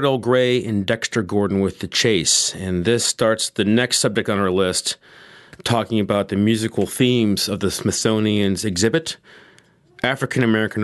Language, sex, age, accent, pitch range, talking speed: English, male, 30-49, American, 100-125 Hz, 150 wpm